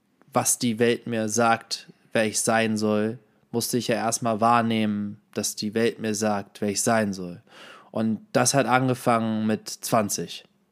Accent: German